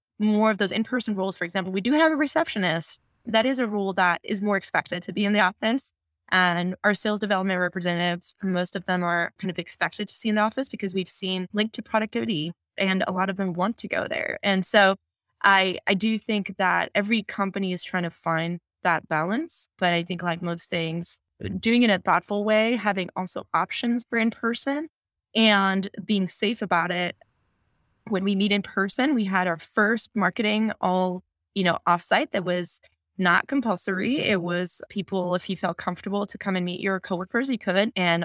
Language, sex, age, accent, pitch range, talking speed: English, female, 20-39, American, 180-210 Hz, 200 wpm